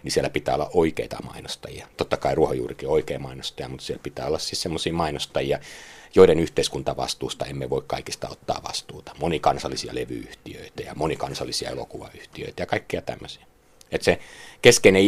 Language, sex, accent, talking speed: Finnish, male, native, 145 wpm